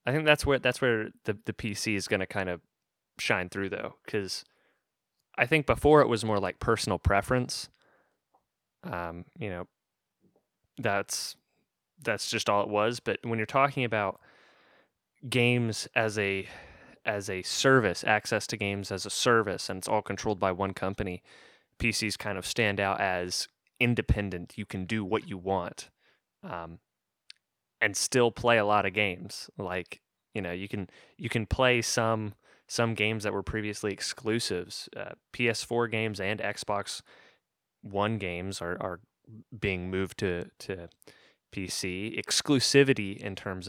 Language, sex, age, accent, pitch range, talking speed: English, male, 20-39, American, 95-115 Hz, 155 wpm